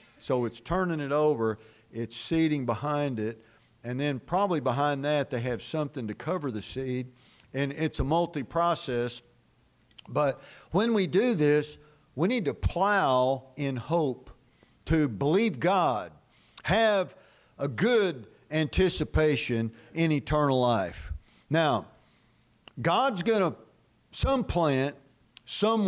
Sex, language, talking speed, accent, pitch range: male, English, 125 wpm, American, 125-180 Hz